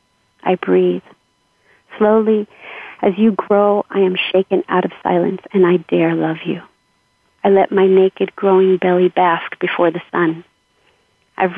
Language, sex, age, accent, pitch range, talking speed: English, female, 40-59, American, 175-195 Hz, 145 wpm